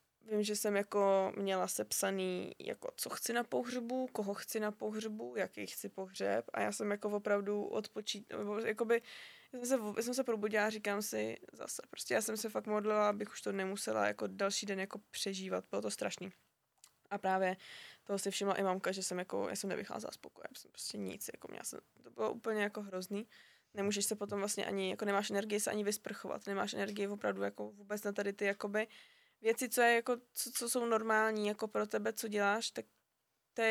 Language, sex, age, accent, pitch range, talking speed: Czech, female, 20-39, native, 190-220 Hz, 195 wpm